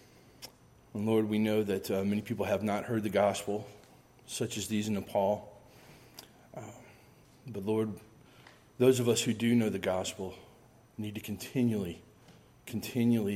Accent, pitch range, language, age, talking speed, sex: American, 105-125 Hz, English, 40-59, 150 wpm, male